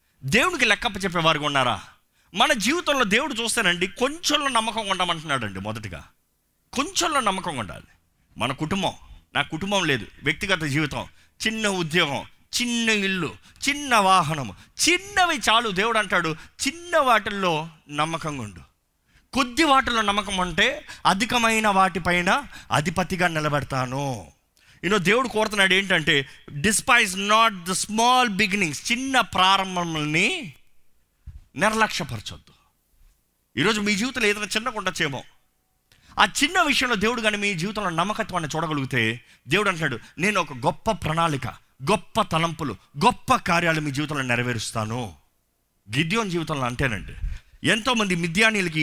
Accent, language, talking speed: native, Telugu, 110 wpm